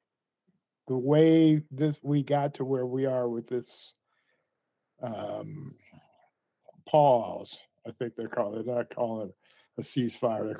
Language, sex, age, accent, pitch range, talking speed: English, male, 50-69, American, 120-150 Hz, 135 wpm